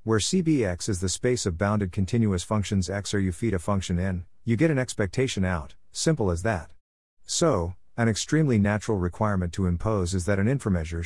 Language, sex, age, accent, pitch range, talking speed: English, male, 50-69, American, 90-115 Hz, 190 wpm